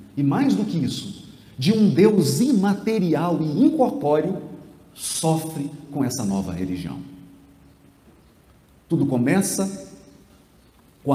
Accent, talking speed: Brazilian, 100 wpm